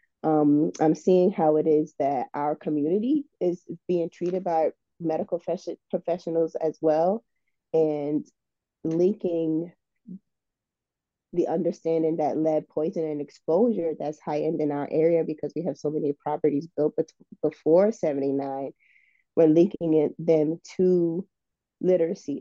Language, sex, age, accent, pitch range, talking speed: English, female, 20-39, American, 155-175 Hz, 130 wpm